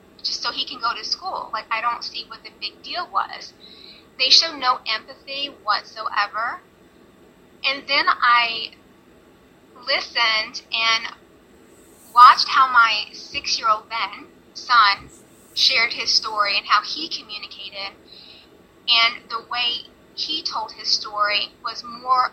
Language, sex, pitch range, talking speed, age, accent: English, female, 220-270 Hz, 125 wpm, 20-39, American